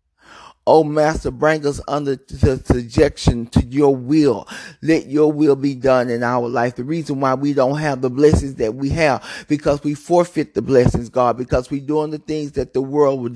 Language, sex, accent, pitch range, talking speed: English, male, American, 130-160 Hz, 200 wpm